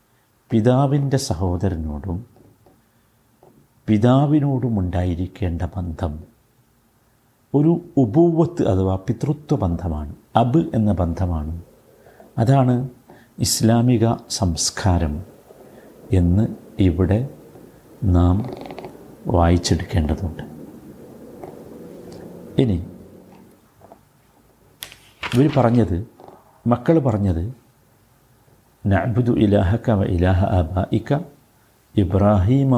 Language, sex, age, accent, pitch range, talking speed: Malayalam, male, 60-79, native, 95-130 Hz, 50 wpm